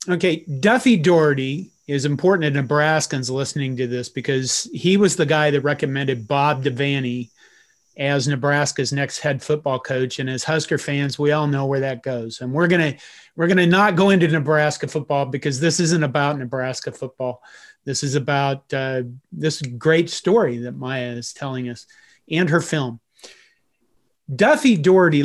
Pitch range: 140-170 Hz